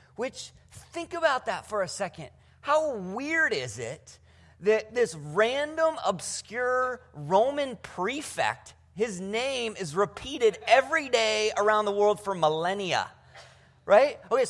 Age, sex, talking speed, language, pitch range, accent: 30-49, male, 125 wpm, English, 185-275 Hz, American